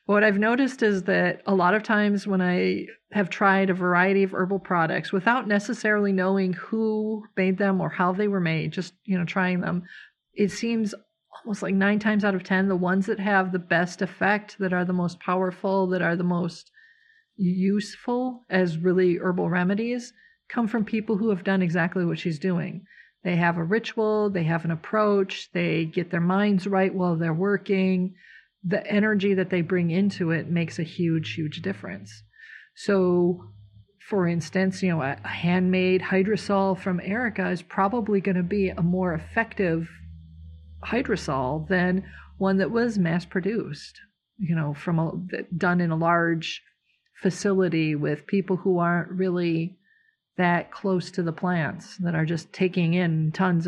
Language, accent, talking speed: English, American, 170 wpm